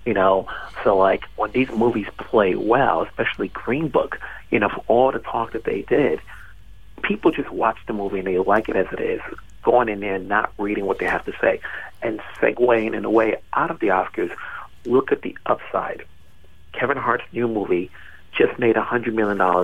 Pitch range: 100-120 Hz